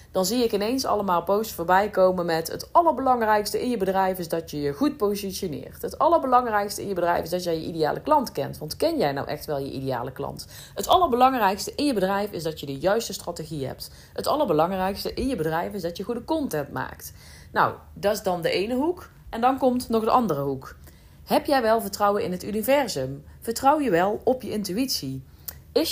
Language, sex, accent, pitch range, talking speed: Dutch, female, Dutch, 160-250 Hz, 210 wpm